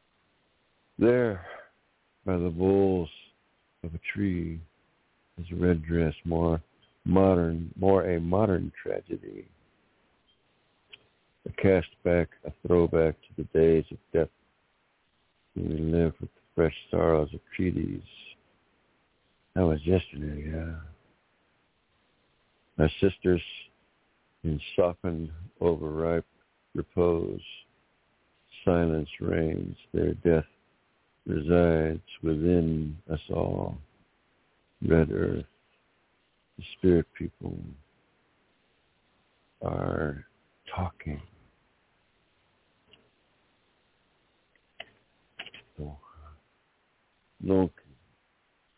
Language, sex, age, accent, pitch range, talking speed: English, male, 60-79, American, 80-95 Hz, 75 wpm